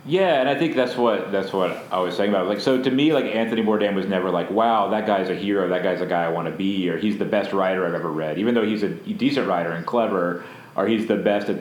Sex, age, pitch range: male, 30-49, 85-105 Hz